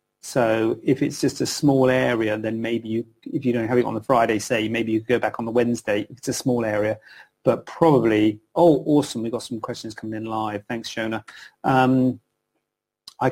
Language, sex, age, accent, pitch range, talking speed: English, male, 30-49, British, 110-135 Hz, 210 wpm